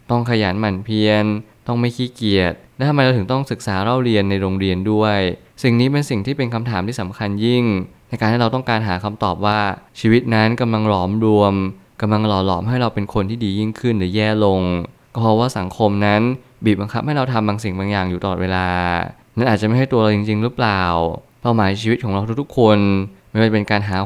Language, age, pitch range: Thai, 20-39, 100-120 Hz